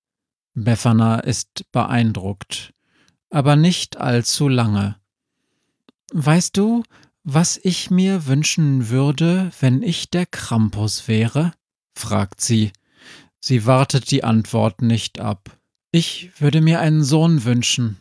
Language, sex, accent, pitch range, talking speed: German, male, German, 110-145 Hz, 110 wpm